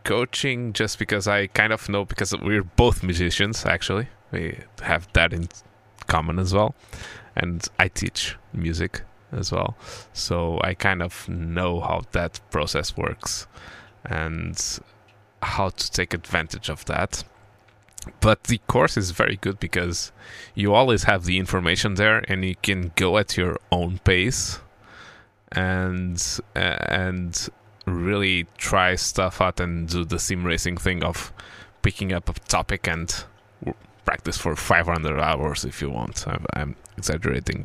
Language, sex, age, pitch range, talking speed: Portuguese, male, 20-39, 85-105 Hz, 140 wpm